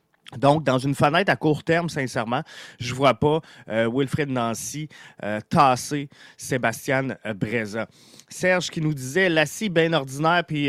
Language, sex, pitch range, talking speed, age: French, male, 115-150 Hz, 165 wpm, 30-49